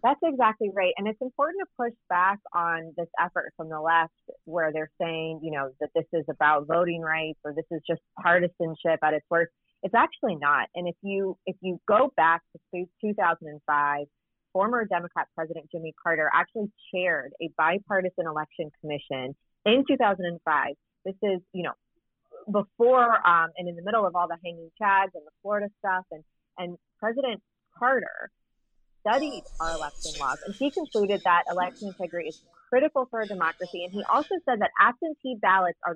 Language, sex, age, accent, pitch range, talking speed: English, female, 30-49, American, 165-205 Hz, 175 wpm